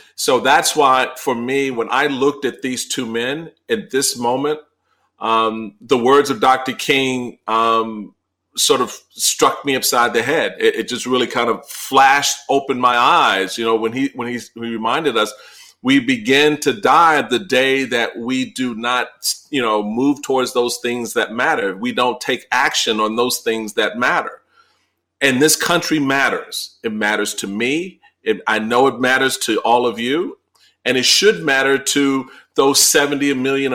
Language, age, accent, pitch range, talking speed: English, 40-59, American, 115-140 Hz, 175 wpm